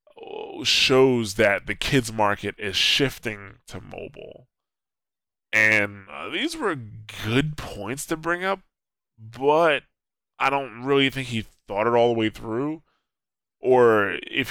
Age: 10-29